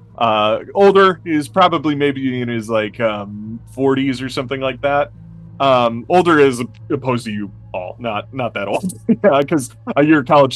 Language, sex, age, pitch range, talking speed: English, male, 30-49, 110-140 Hz, 165 wpm